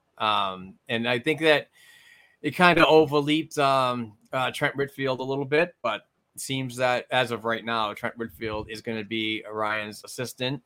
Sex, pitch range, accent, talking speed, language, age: male, 105-130 Hz, American, 180 wpm, English, 30-49